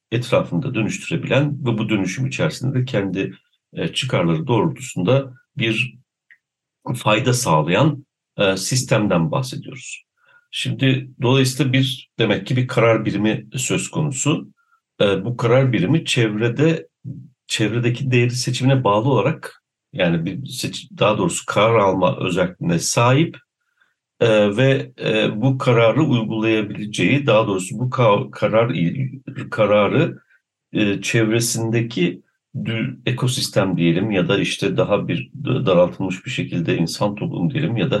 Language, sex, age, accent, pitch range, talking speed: Turkish, male, 60-79, native, 110-140 Hz, 105 wpm